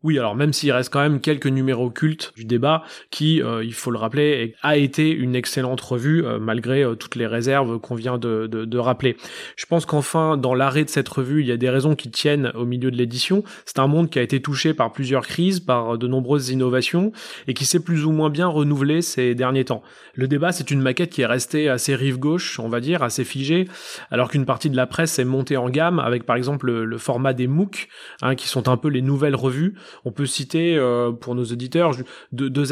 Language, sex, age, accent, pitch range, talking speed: French, male, 20-39, French, 125-150 Hz, 235 wpm